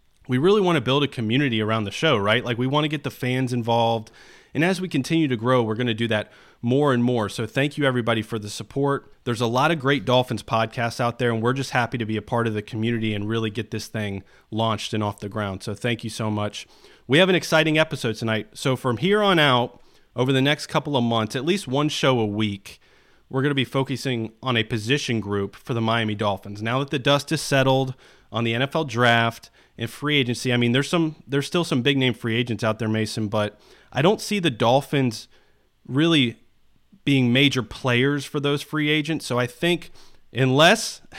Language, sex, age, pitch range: English, male, 30-49, 110-140 Hz